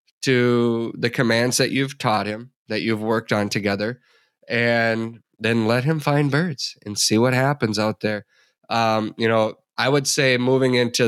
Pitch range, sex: 110-135 Hz, male